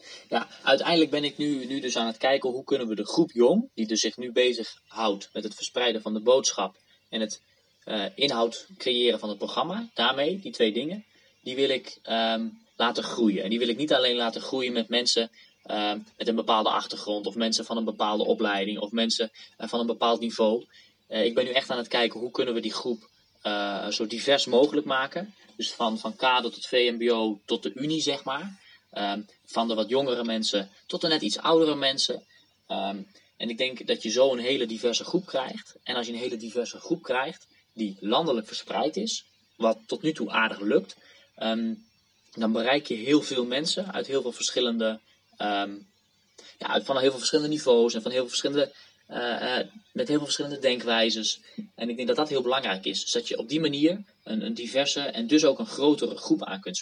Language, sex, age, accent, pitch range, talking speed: Dutch, male, 20-39, Dutch, 110-145 Hz, 210 wpm